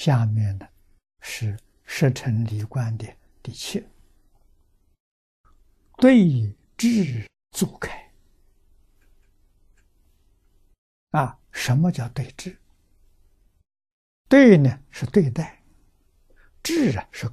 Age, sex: 60-79, male